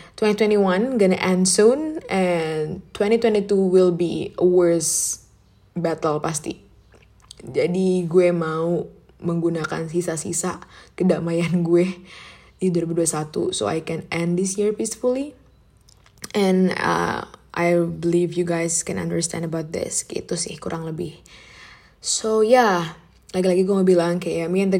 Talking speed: 125 wpm